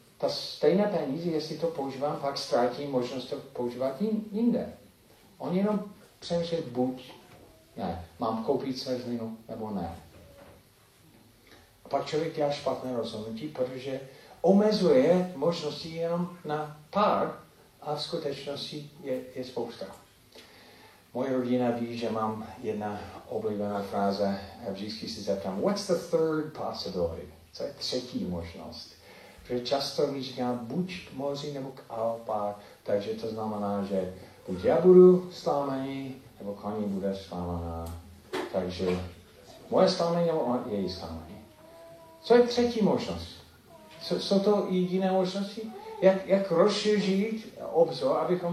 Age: 40-59